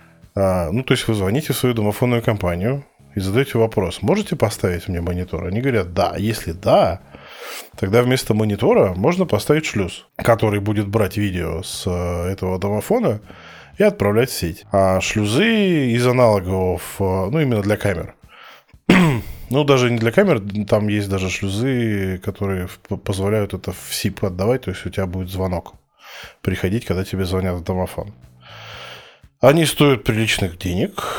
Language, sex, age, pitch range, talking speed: Russian, male, 20-39, 95-115 Hz, 150 wpm